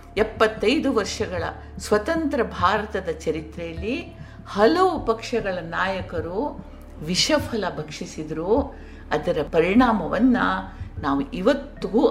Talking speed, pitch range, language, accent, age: 70 wpm, 155-240 Hz, Kannada, native, 50-69